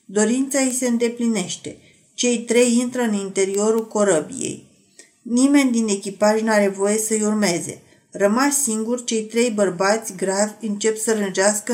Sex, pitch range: female, 200-235 Hz